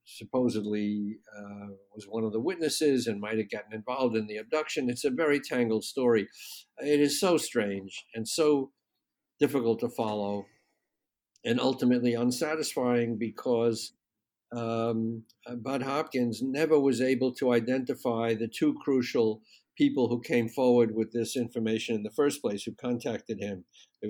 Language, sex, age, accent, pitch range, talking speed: English, male, 60-79, American, 110-130 Hz, 145 wpm